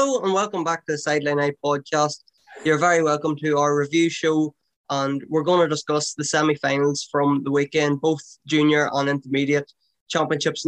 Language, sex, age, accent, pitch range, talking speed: English, male, 10-29, Irish, 140-155 Hz, 175 wpm